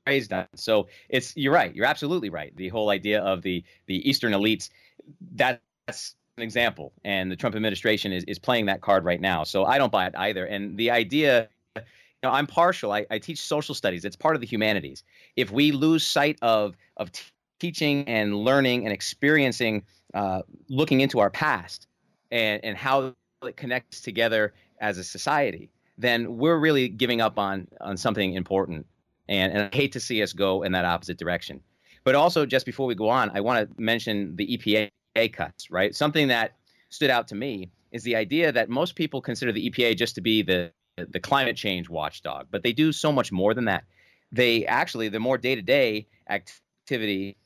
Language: English